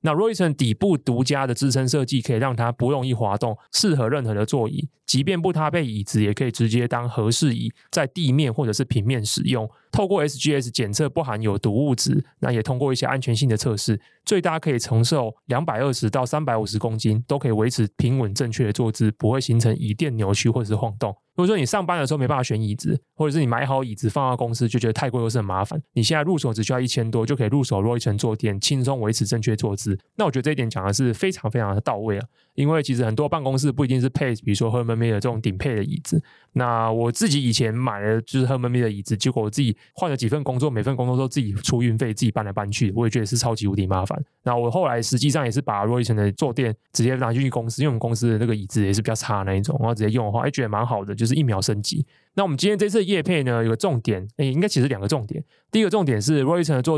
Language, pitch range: Chinese, 115-145 Hz